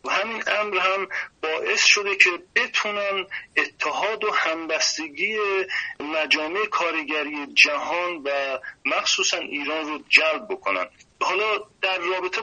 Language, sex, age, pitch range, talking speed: Persian, male, 40-59, 155-215 Hz, 110 wpm